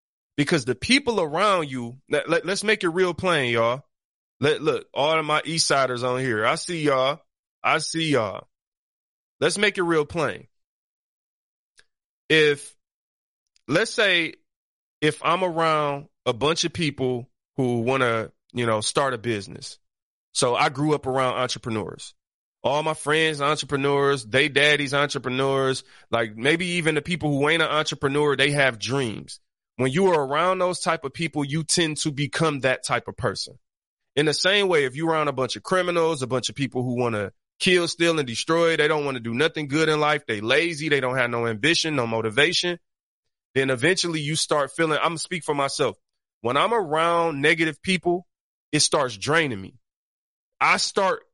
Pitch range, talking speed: 130-165 Hz, 180 wpm